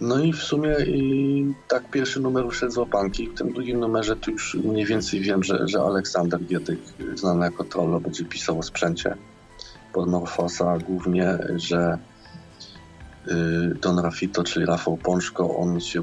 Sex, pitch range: male, 90-110 Hz